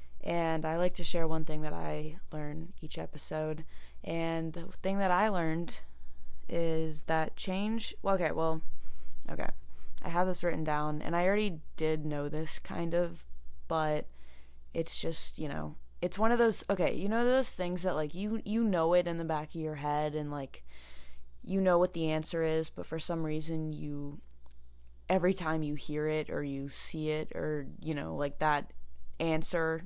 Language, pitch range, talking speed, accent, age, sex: English, 140-175 Hz, 185 wpm, American, 20-39, female